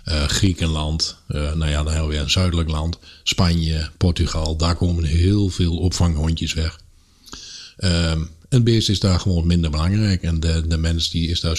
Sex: male